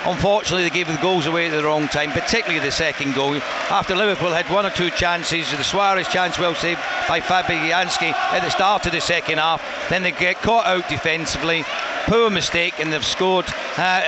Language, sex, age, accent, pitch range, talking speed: English, male, 60-79, British, 165-195 Hz, 205 wpm